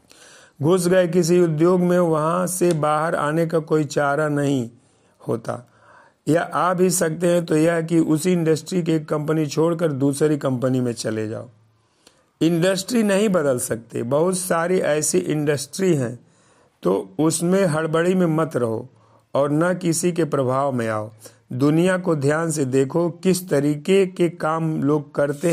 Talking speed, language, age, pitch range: 155 wpm, Hindi, 50-69, 140-175 Hz